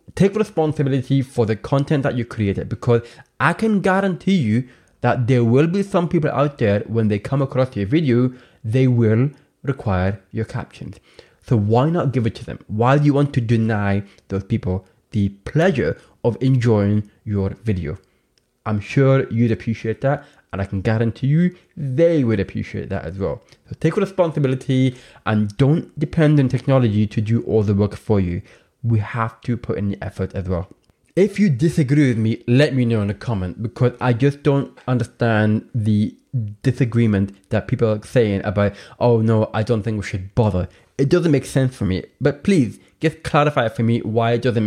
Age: 20-39